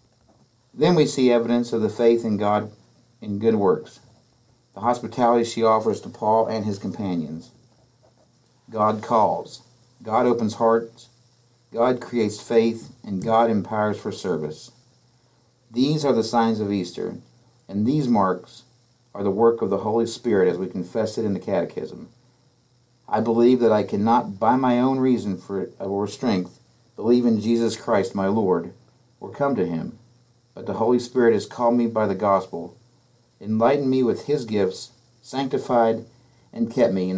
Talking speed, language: 160 wpm, English